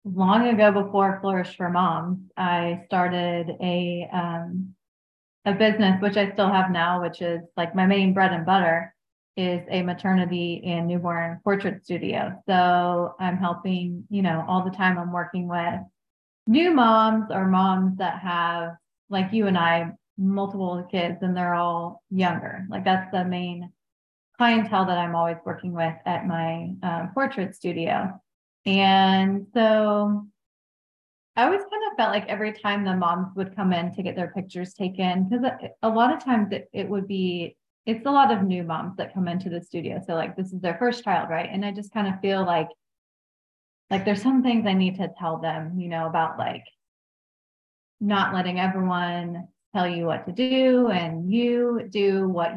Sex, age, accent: female, 20-39, American